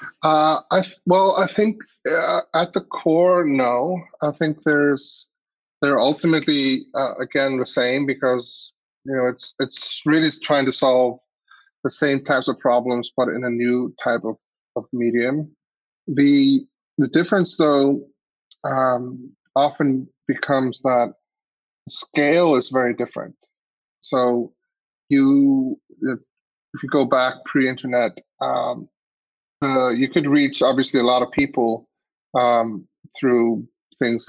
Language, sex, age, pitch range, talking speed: English, male, 30-49, 120-150 Hz, 130 wpm